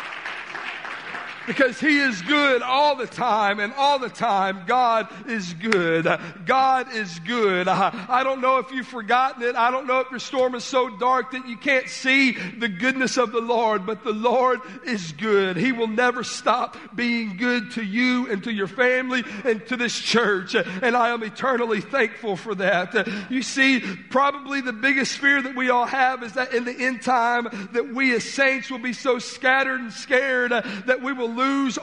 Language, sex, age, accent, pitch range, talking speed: English, male, 50-69, American, 230-260 Hz, 195 wpm